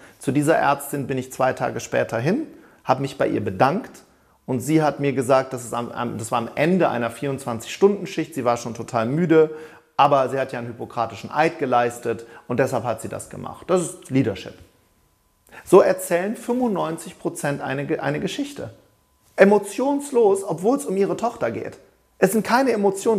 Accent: German